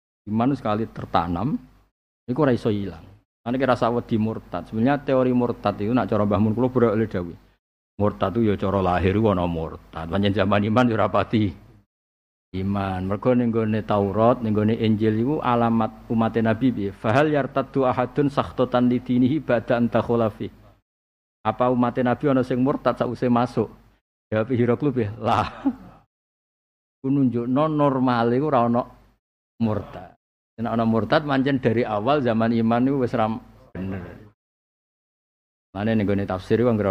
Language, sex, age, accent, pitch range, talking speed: Indonesian, male, 50-69, native, 100-125 Hz, 135 wpm